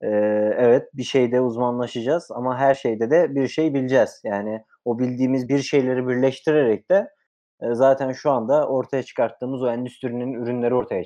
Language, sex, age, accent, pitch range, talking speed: Turkish, male, 30-49, native, 120-150 Hz, 145 wpm